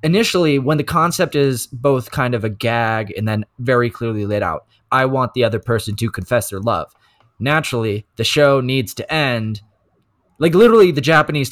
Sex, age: male, 20-39